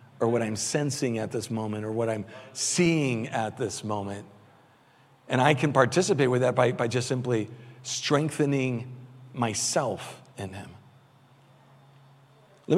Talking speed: 135 wpm